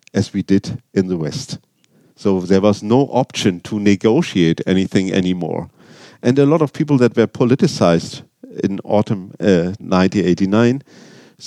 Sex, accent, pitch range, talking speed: male, German, 95-115 Hz, 140 wpm